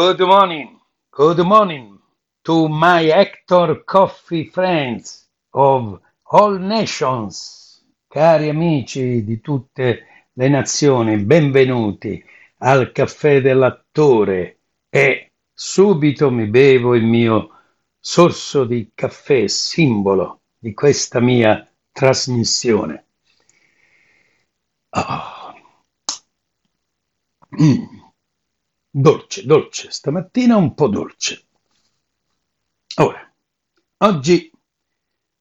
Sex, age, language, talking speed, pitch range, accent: male, 60-79, Italian, 80 wpm, 110-150 Hz, native